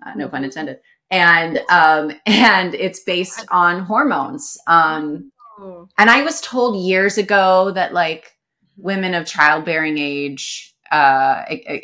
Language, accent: English, American